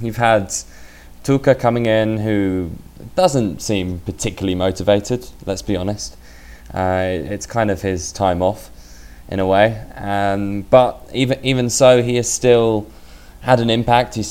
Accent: British